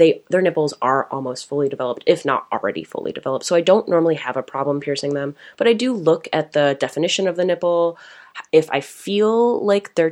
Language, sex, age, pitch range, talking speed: English, female, 20-39, 140-180 Hz, 210 wpm